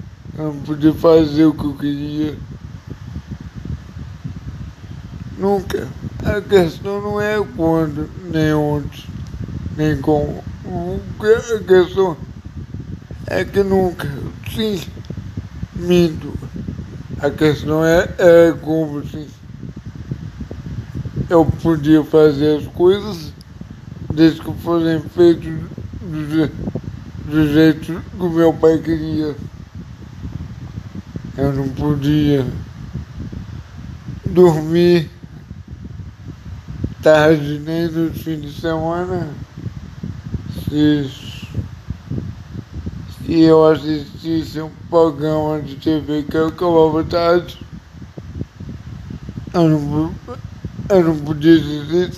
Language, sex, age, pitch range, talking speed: Portuguese, male, 60-79, 140-165 Hz, 85 wpm